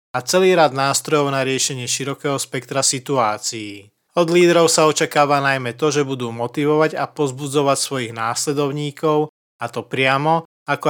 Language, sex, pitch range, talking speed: Slovak, male, 125-150 Hz, 145 wpm